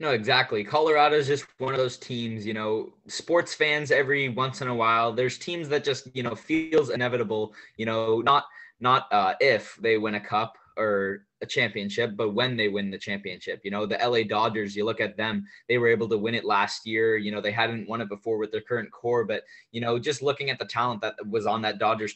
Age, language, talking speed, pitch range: 20-39, English, 235 wpm, 105-130 Hz